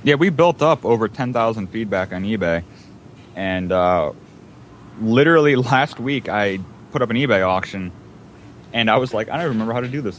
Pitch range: 105-130 Hz